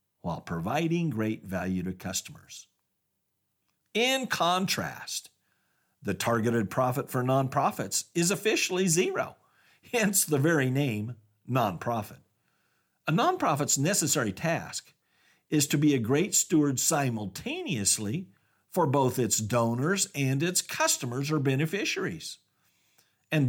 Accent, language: American, English